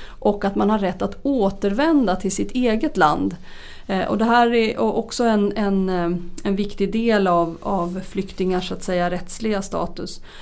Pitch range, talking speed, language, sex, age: 185-225 Hz, 160 wpm, Swedish, female, 30-49